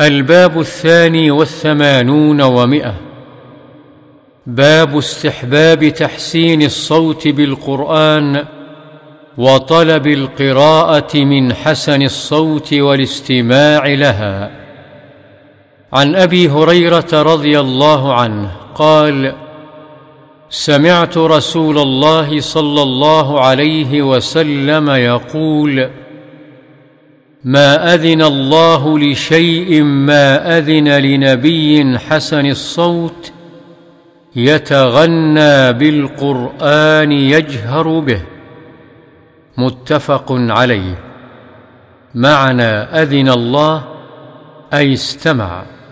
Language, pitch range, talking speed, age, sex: Arabic, 135-155 Hz, 65 wpm, 50-69, male